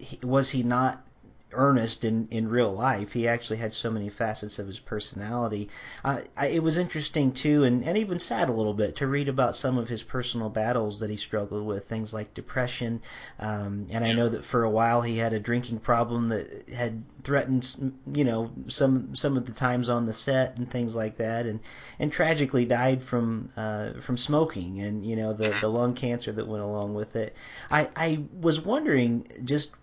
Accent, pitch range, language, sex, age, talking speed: American, 110-130 Hz, English, male, 40-59, 205 wpm